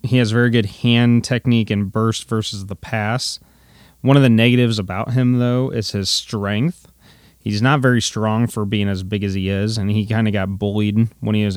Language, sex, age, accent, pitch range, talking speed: English, male, 20-39, American, 105-120 Hz, 215 wpm